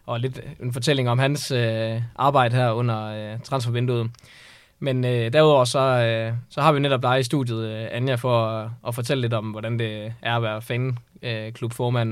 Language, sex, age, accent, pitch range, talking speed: Danish, male, 20-39, native, 115-135 Hz, 160 wpm